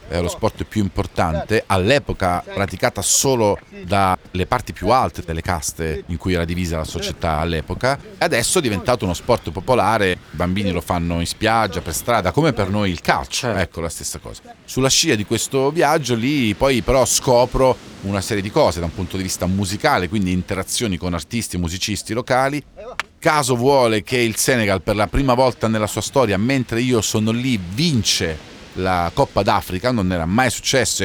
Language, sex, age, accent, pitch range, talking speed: Italian, male, 40-59, native, 90-120 Hz, 180 wpm